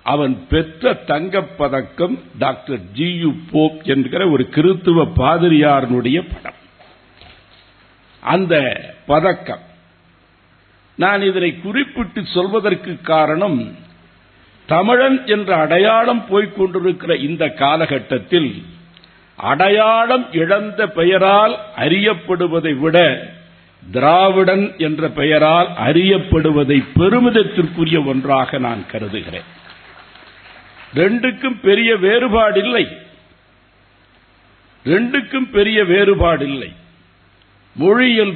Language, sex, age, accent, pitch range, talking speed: Tamil, male, 60-79, native, 130-205 Hz, 70 wpm